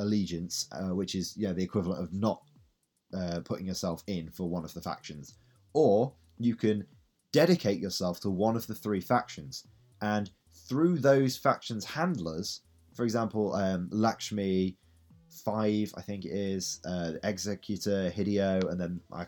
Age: 20-39